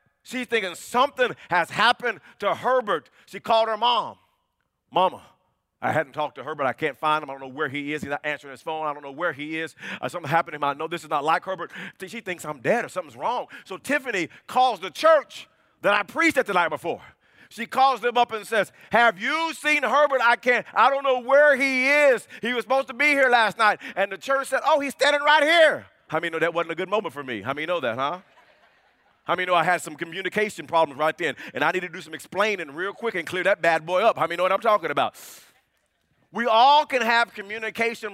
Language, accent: English, American